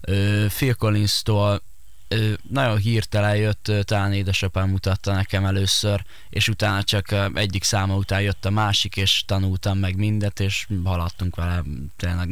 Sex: male